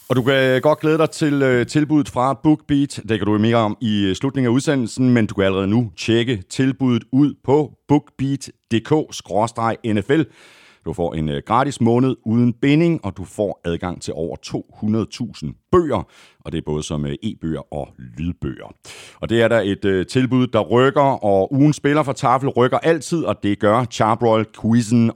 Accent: native